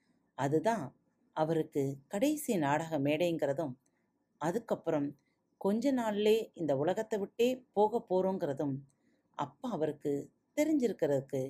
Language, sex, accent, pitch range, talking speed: Tamil, female, native, 145-220 Hz, 85 wpm